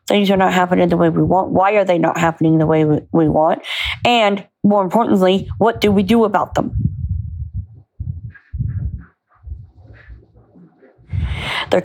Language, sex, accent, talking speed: English, female, American, 135 wpm